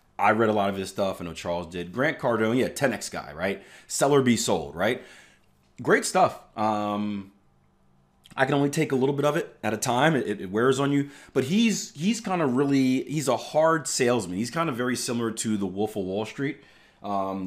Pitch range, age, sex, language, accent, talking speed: 95-125 Hz, 30-49, male, English, American, 215 wpm